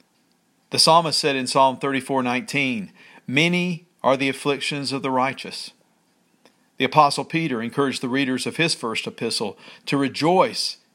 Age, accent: 50-69, American